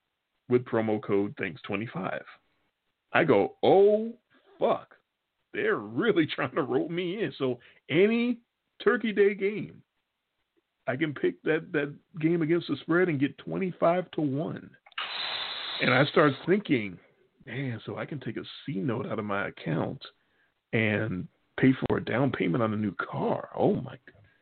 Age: 40-59